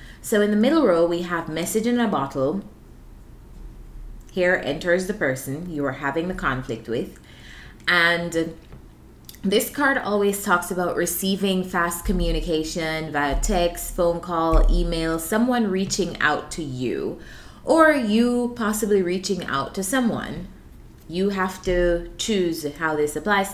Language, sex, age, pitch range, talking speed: English, female, 20-39, 165-210 Hz, 140 wpm